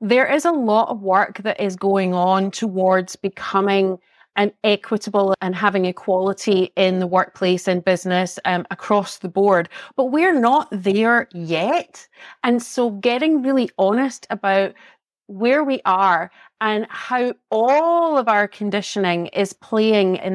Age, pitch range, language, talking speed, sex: 30-49, 195-250 Hz, English, 145 wpm, female